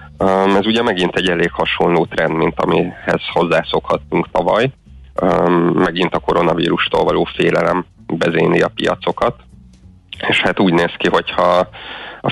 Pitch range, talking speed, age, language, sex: 85-95 Hz, 125 wpm, 30-49, Hungarian, male